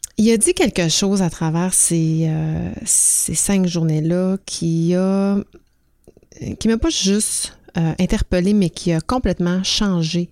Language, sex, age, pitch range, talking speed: French, female, 30-49, 165-200 Hz, 145 wpm